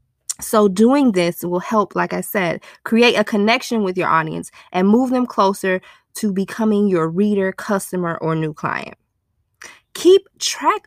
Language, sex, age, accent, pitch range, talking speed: English, female, 20-39, American, 180-230 Hz, 155 wpm